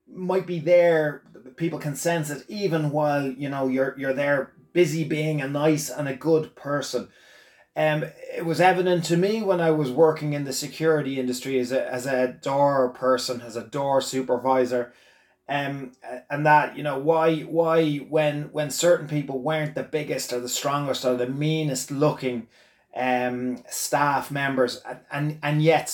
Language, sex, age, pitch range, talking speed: English, male, 30-49, 130-155 Hz, 170 wpm